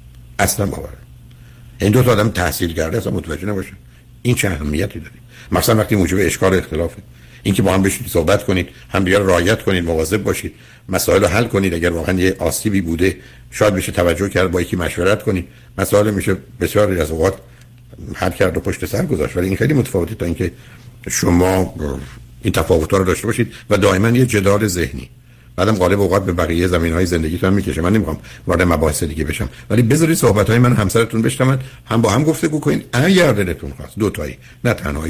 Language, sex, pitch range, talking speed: Persian, male, 90-120 Hz, 185 wpm